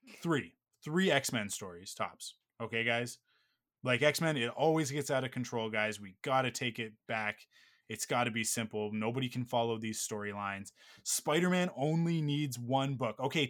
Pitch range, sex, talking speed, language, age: 110-145 Hz, male, 160 wpm, English, 20-39